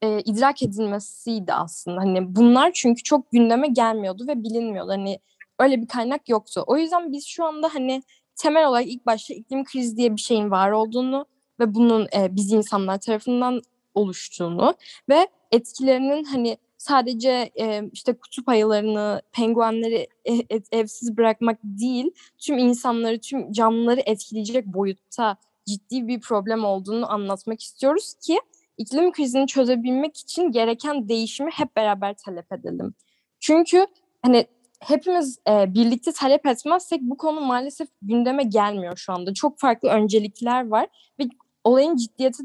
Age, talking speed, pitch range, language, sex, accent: 10-29, 135 wpm, 220-275 Hz, Turkish, female, native